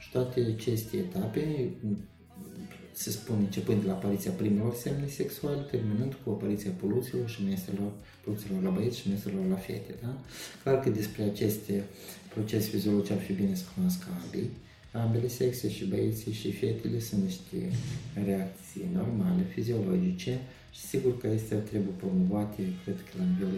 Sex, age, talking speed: male, 30-49, 150 wpm